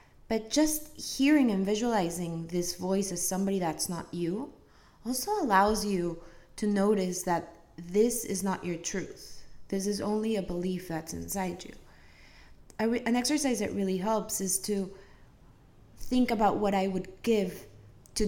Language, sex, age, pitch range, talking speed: English, female, 20-39, 175-230 Hz, 150 wpm